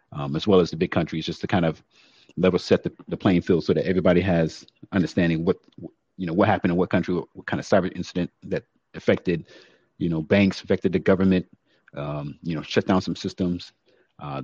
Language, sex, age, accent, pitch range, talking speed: English, male, 30-49, American, 75-90 Hz, 215 wpm